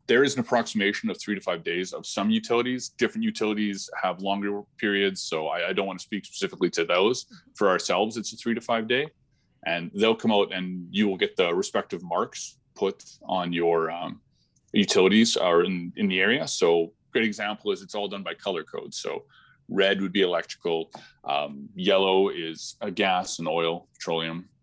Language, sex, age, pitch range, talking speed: English, male, 20-39, 90-115 Hz, 190 wpm